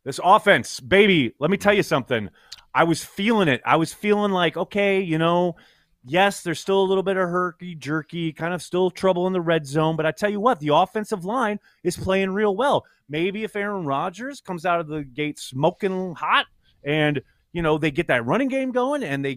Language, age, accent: English, 30-49, American